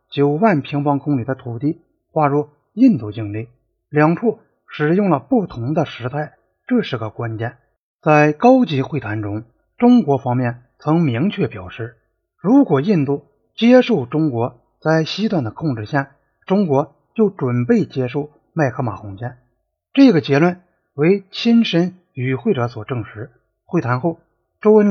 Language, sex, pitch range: Chinese, male, 125-185 Hz